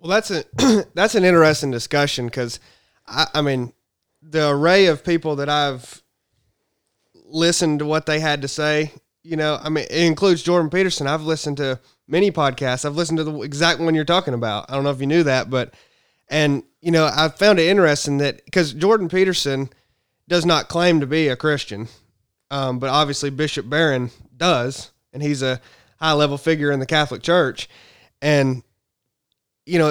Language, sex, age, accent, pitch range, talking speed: English, male, 20-39, American, 135-170 Hz, 185 wpm